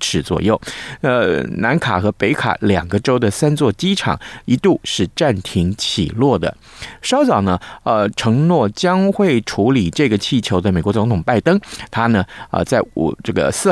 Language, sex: Chinese, male